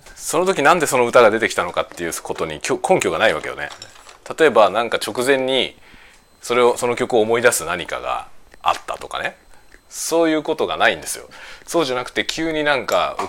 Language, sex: Japanese, male